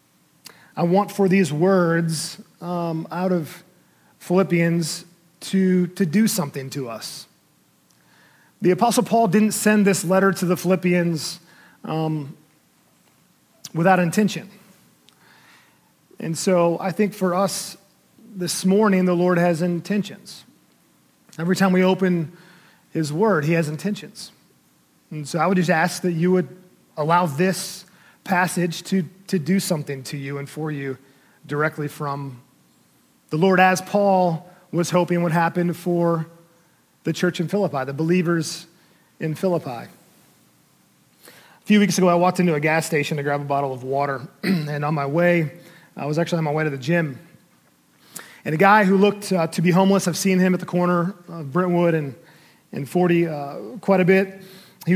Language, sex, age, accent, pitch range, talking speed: English, male, 40-59, American, 160-190 Hz, 155 wpm